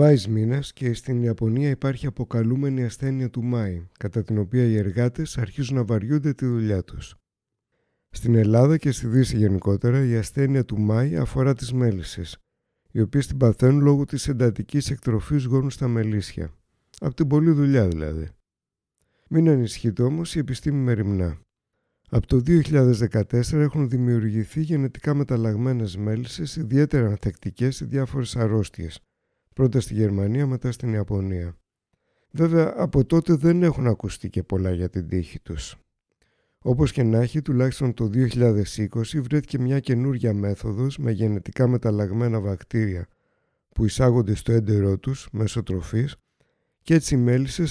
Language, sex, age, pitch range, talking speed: Greek, male, 60-79, 105-135 Hz, 140 wpm